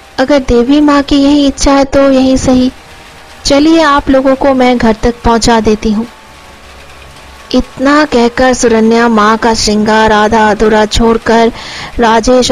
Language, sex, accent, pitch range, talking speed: Hindi, female, native, 220-265 Hz, 145 wpm